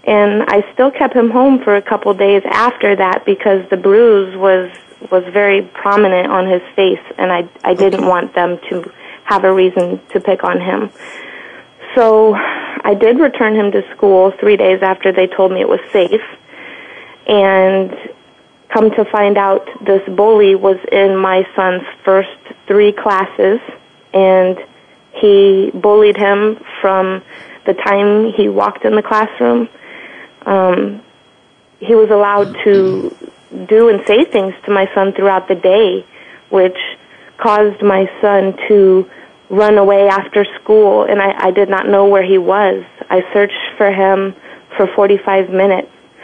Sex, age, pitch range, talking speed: female, 30-49, 190-210 Hz, 155 wpm